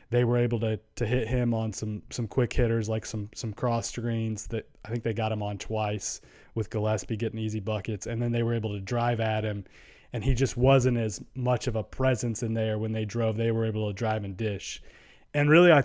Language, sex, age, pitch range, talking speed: English, male, 20-39, 115-130 Hz, 240 wpm